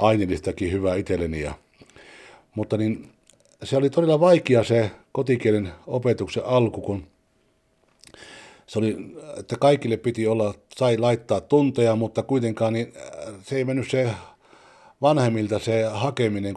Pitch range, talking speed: 95-120 Hz, 125 wpm